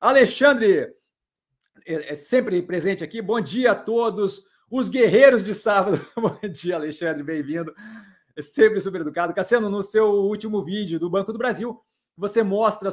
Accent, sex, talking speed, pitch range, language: Brazilian, male, 150 wpm, 185-225 Hz, Portuguese